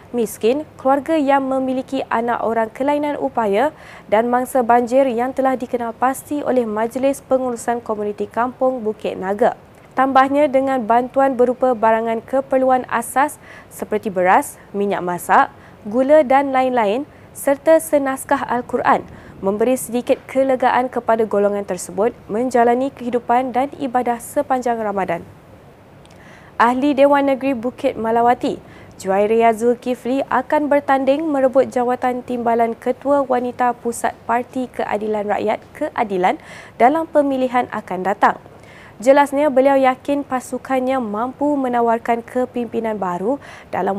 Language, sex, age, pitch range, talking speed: Malay, female, 20-39, 230-270 Hz, 115 wpm